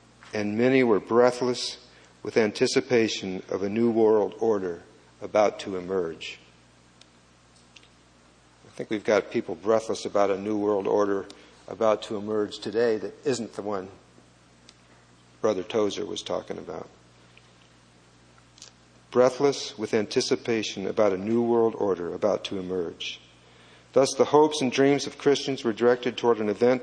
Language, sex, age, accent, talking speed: English, male, 50-69, American, 135 wpm